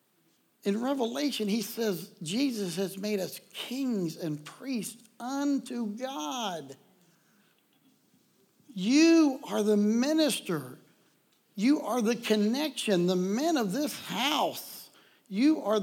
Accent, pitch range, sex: American, 200-275 Hz, male